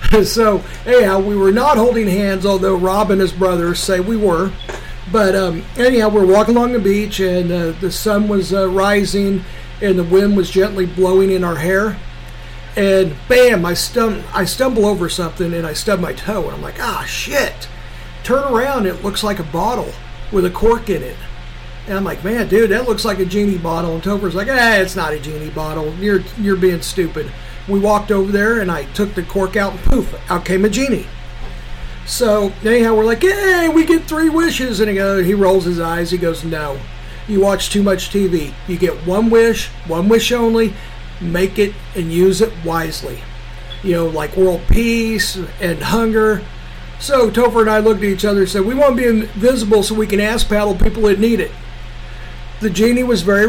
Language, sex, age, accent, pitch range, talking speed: English, male, 50-69, American, 170-215 Hz, 205 wpm